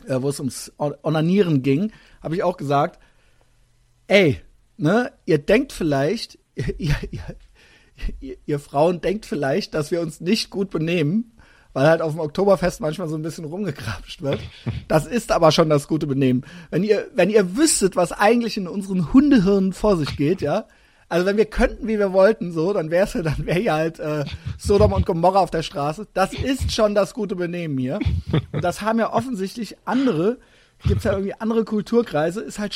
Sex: male